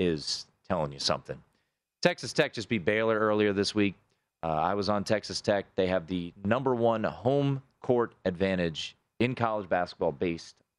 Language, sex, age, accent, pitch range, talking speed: English, male, 30-49, American, 95-135 Hz, 165 wpm